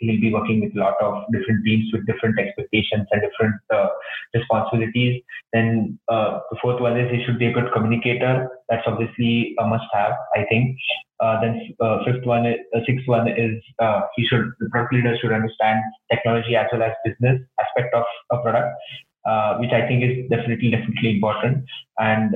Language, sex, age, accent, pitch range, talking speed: English, male, 20-39, Indian, 110-120 Hz, 195 wpm